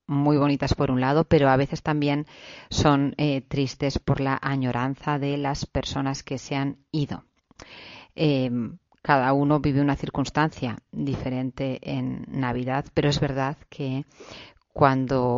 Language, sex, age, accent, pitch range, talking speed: Spanish, female, 40-59, Spanish, 130-145 Hz, 140 wpm